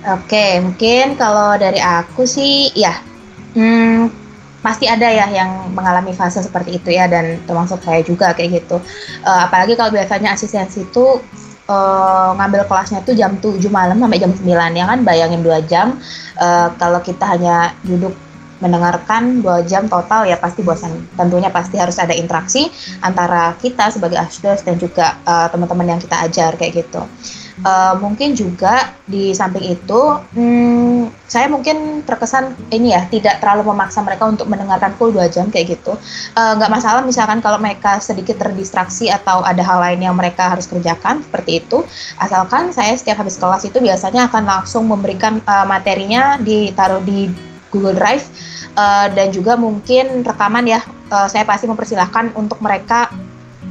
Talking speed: 160 wpm